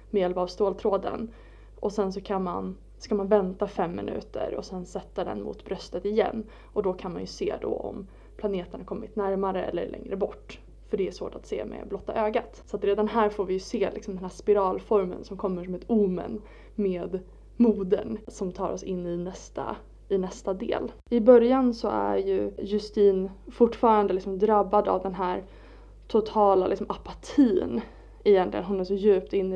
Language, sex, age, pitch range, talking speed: Swedish, female, 20-39, 185-215 Hz, 195 wpm